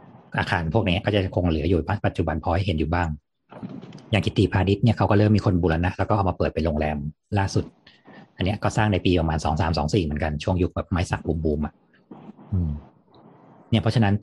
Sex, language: male, Thai